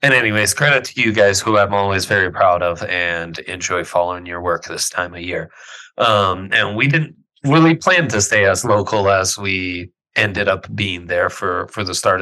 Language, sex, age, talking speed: English, male, 30-49, 200 wpm